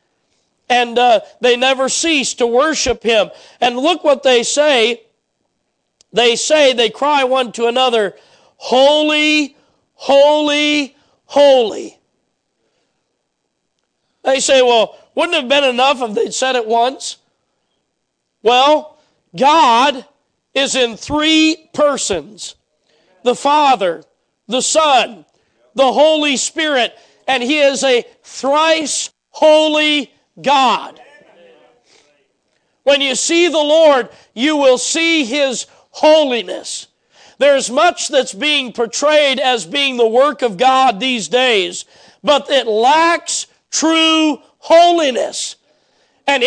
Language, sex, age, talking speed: English, male, 40-59, 110 wpm